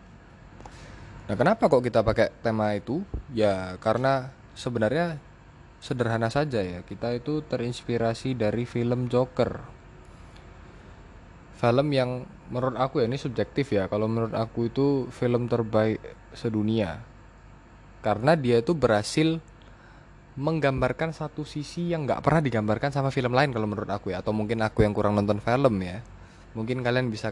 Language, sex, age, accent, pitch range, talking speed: Indonesian, male, 20-39, native, 105-135 Hz, 140 wpm